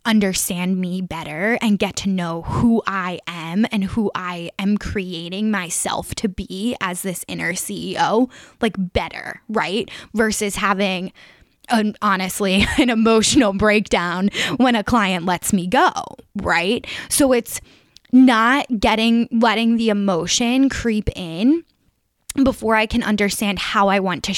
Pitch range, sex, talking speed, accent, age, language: 185-225 Hz, female, 135 wpm, American, 10-29, English